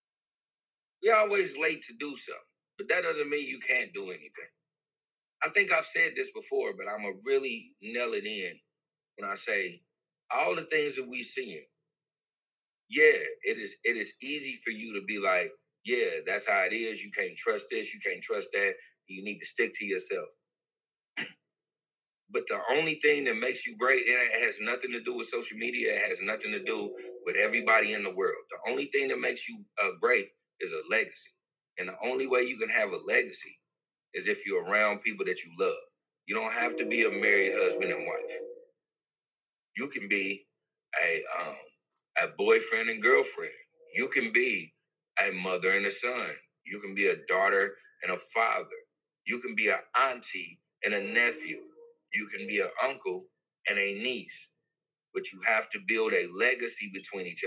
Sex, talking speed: male, 190 wpm